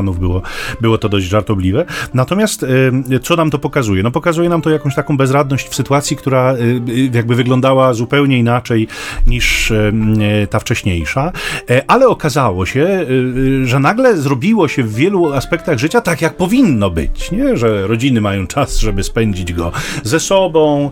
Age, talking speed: 40-59, 145 wpm